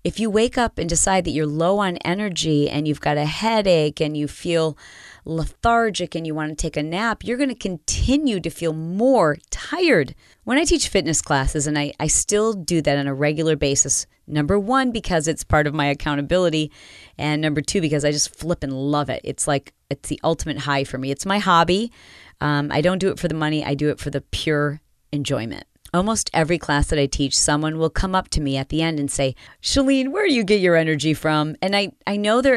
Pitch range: 150-200 Hz